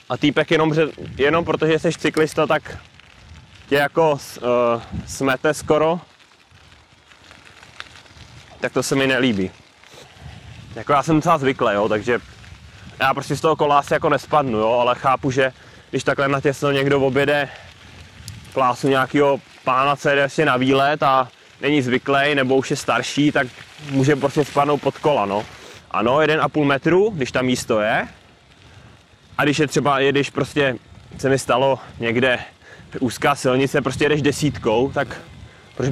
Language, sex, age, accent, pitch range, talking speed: Czech, male, 20-39, native, 120-145 Hz, 150 wpm